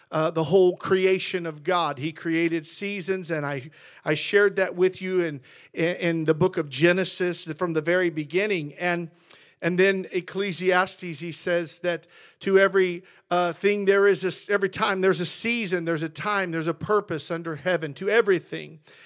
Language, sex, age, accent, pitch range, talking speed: English, male, 50-69, American, 175-200 Hz, 175 wpm